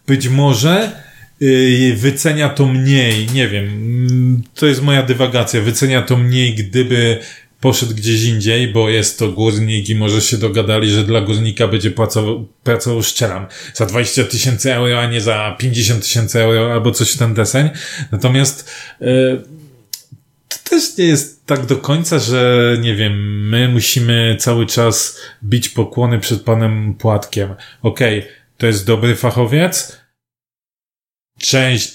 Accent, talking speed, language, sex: native, 145 wpm, Polish, male